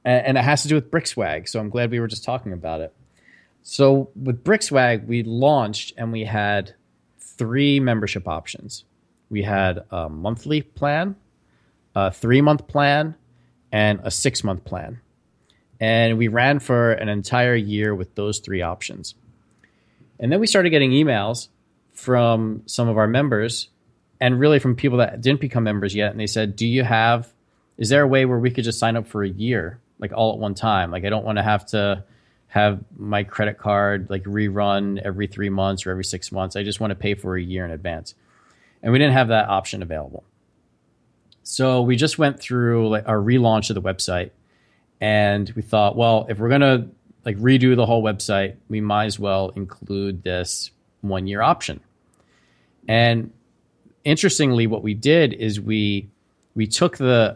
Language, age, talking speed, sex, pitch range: English, 30-49, 180 wpm, male, 100-125 Hz